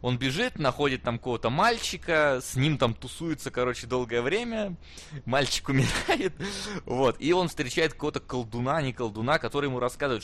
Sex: male